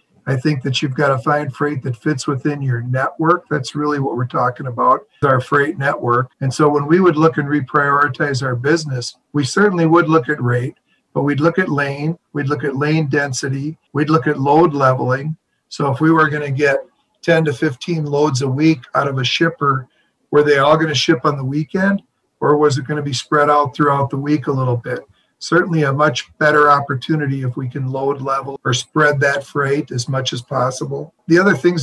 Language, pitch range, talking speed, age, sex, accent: English, 135-155 Hz, 215 wpm, 50-69, male, American